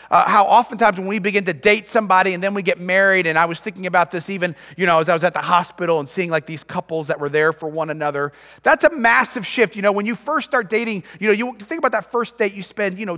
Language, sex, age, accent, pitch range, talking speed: English, male, 30-49, American, 205-290 Hz, 285 wpm